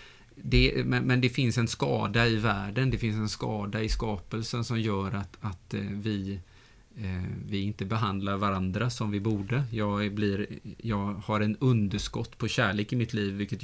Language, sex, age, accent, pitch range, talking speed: Swedish, male, 30-49, Norwegian, 100-115 Hz, 160 wpm